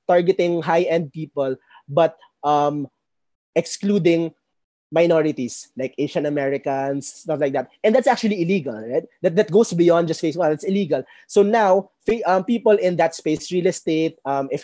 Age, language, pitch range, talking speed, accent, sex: 20-39, English, 145-185 Hz, 155 wpm, Filipino, male